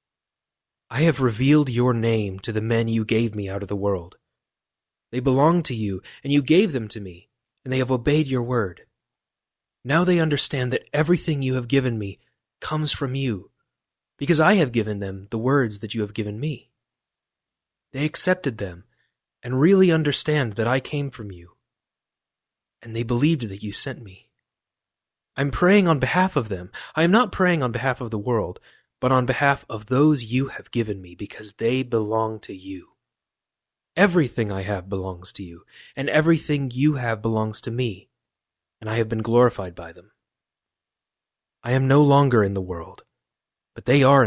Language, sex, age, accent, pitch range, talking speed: English, male, 30-49, American, 105-140 Hz, 180 wpm